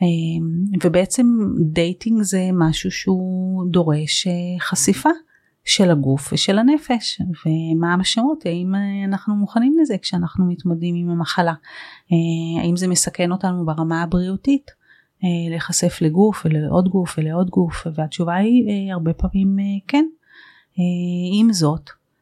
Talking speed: 110 wpm